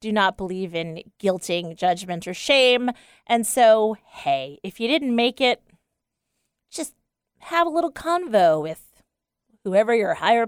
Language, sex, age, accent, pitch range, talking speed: English, female, 30-49, American, 175-235 Hz, 145 wpm